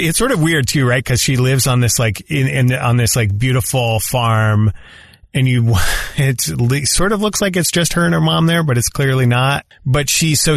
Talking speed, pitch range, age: 235 wpm, 115-140 Hz, 30-49